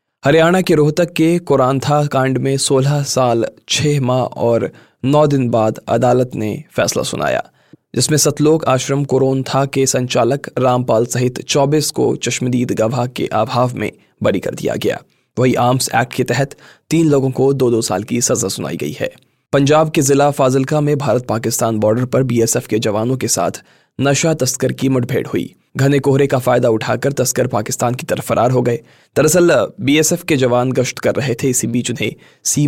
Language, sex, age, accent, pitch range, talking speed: Hindi, male, 20-39, native, 120-140 Hz, 155 wpm